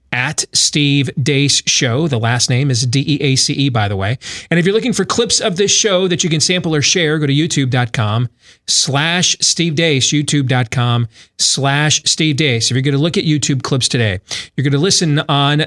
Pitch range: 135-165 Hz